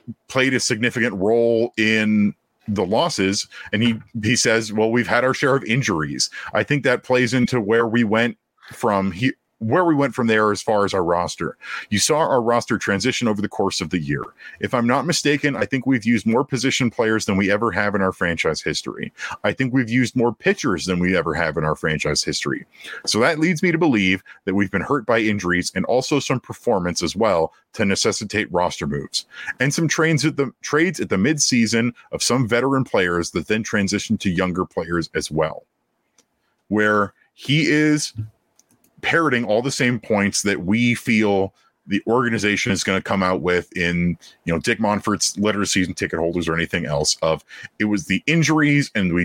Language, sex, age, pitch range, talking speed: English, male, 40-59, 95-125 Hz, 200 wpm